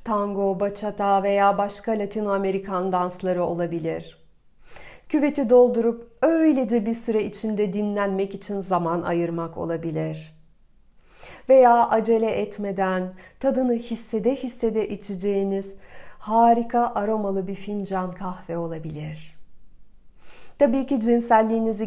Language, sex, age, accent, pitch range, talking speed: Turkish, female, 40-59, native, 180-225 Hz, 95 wpm